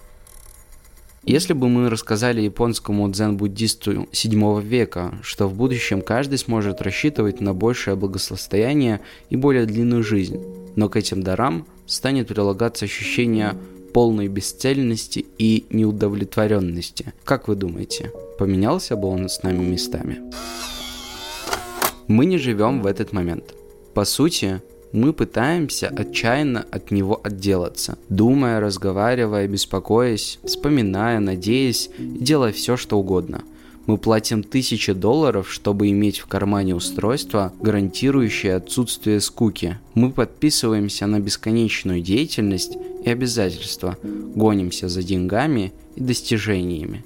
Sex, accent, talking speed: male, native, 110 wpm